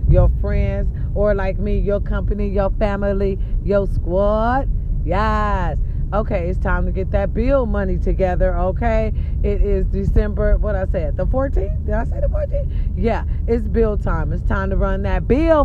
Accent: American